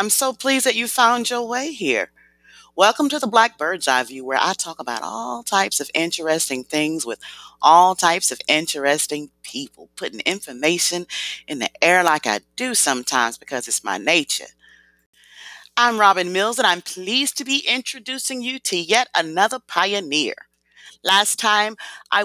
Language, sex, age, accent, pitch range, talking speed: English, female, 40-59, American, 155-215 Hz, 165 wpm